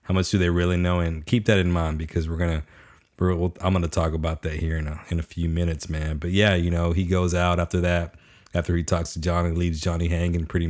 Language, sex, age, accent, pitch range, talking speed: English, male, 30-49, American, 80-95 Hz, 265 wpm